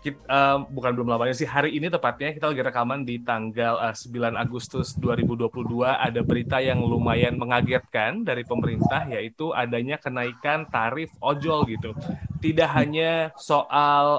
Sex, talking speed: male, 145 wpm